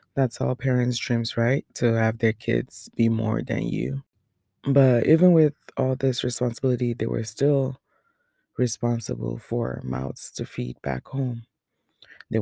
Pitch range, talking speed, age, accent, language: 110-135 Hz, 145 wpm, 20-39, American, English